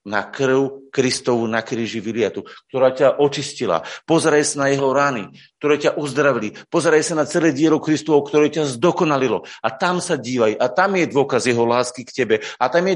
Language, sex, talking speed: Slovak, male, 190 wpm